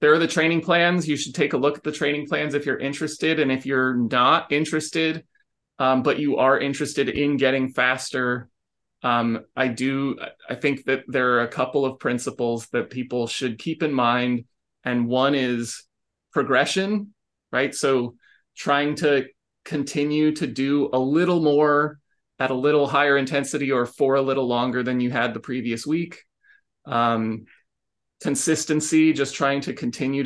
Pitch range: 120-150 Hz